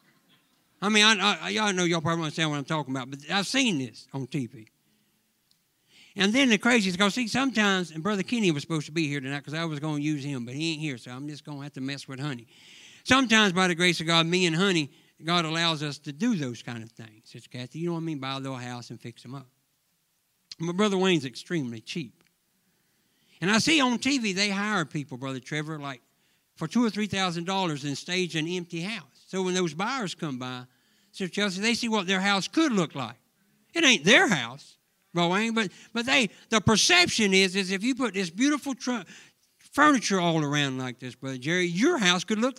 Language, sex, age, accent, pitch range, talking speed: English, male, 60-79, American, 155-255 Hz, 220 wpm